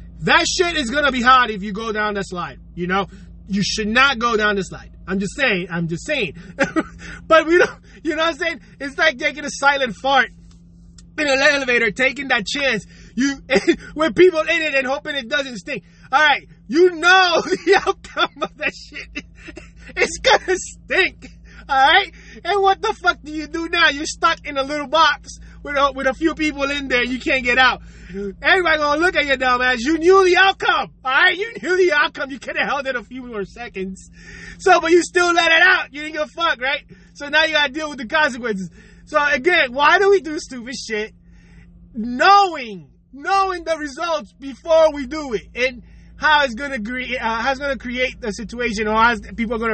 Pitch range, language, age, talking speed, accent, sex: 225-320 Hz, English, 20-39, 215 wpm, American, male